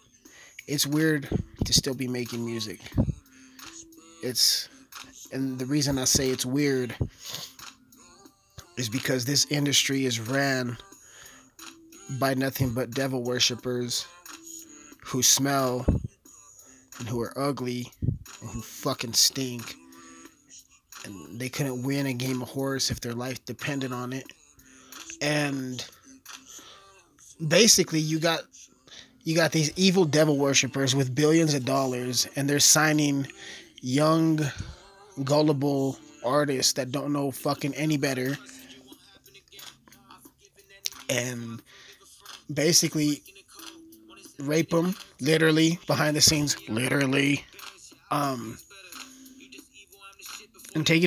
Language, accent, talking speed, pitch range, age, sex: English, American, 105 wpm, 130-155 Hz, 20-39, male